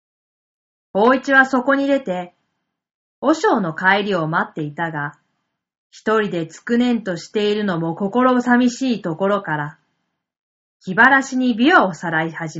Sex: female